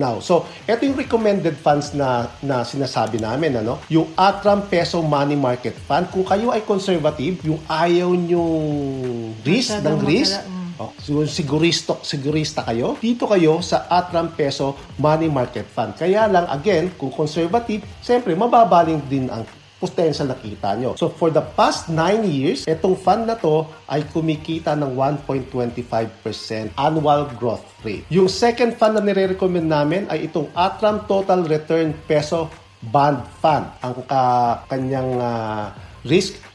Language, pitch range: English, 130-175 Hz